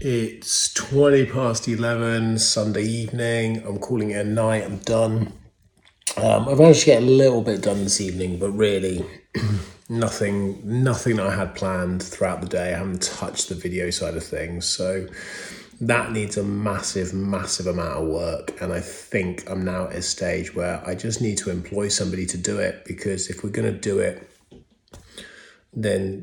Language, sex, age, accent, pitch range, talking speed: English, male, 30-49, British, 95-110 Hz, 175 wpm